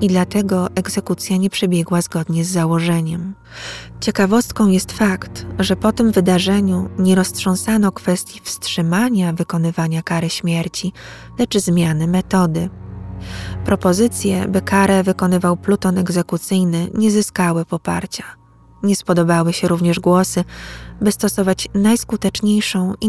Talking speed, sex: 110 wpm, female